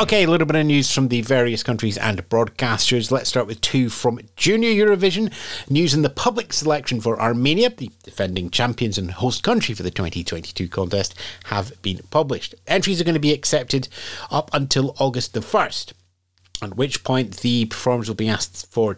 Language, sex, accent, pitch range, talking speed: English, male, British, 100-145 Hz, 185 wpm